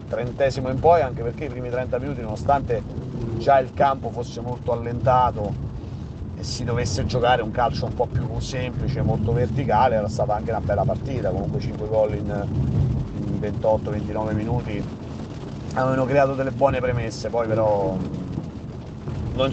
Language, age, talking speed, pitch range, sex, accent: Italian, 40-59, 150 wpm, 105-125 Hz, male, native